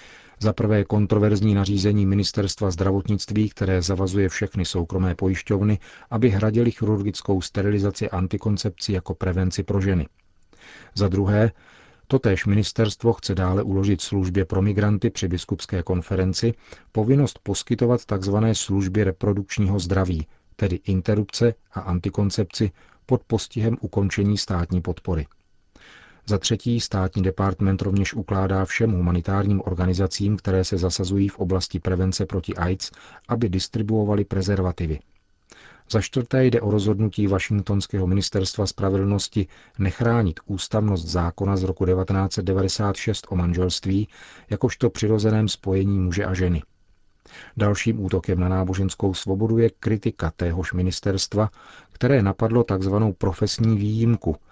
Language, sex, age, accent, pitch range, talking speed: Czech, male, 40-59, native, 95-105 Hz, 115 wpm